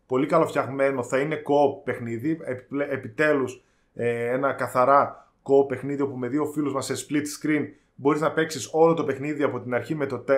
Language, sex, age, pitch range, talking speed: Greek, male, 20-39, 145-180 Hz, 170 wpm